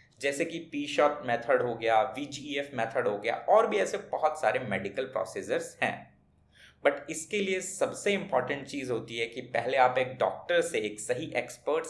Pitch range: 125-170 Hz